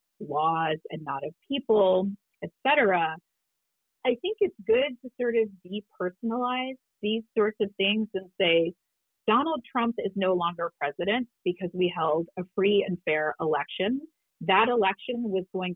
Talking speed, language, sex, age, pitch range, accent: 145 wpm, English, female, 30-49, 170-225 Hz, American